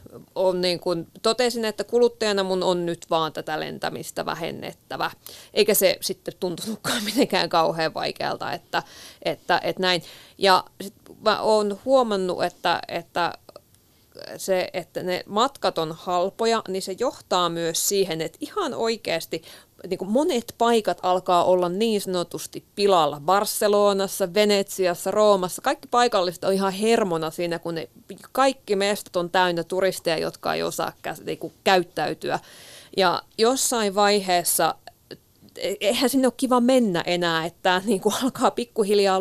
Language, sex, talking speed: Finnish, female, 135 wpm